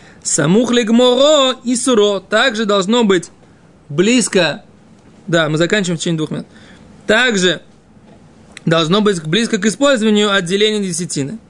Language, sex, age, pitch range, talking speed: Russian, male, 20-39, 180-220 Hz, 115 wpm